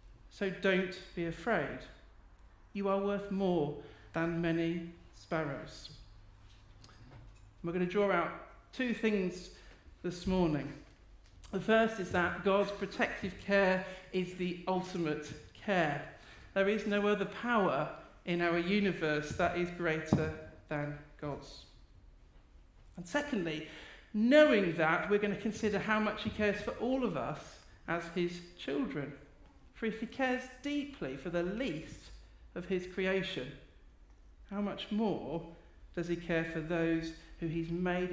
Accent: British